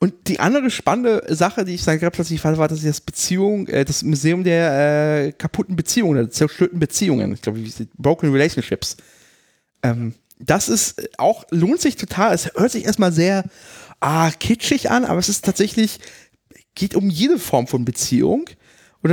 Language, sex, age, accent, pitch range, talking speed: German, male, 30-49, German, 145-195 Hz, 175 wpm